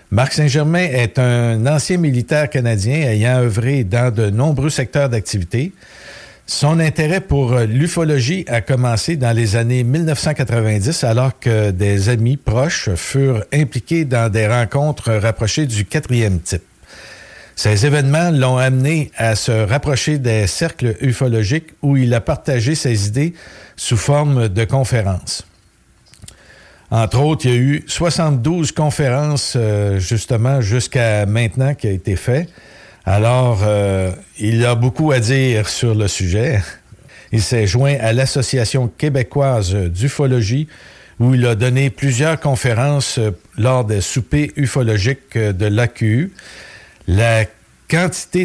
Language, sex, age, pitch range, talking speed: French, male, 60-79, 115-140 Hz, 130 wpm